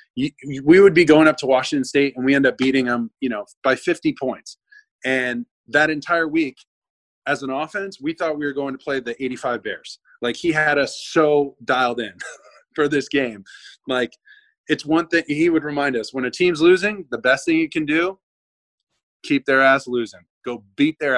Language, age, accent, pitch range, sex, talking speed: English, 20-39, American, 130-195 Hz, male, 200 wpm